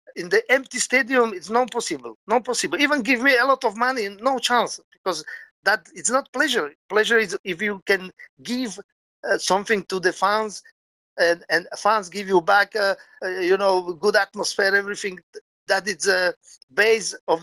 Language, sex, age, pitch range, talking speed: English, male, 50-69, 180-235 Hz, 185 wpm